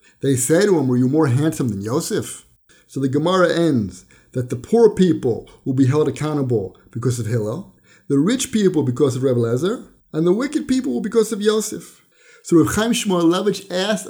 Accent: American